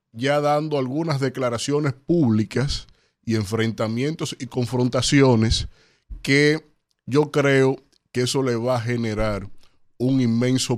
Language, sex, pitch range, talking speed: Spanish, male, 110-130 Hz, 110 wpm